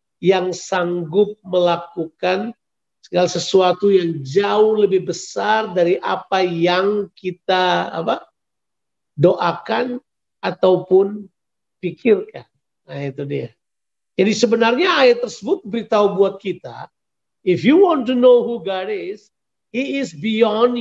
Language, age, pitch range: Indonesian, 50-69, 185-260 Hz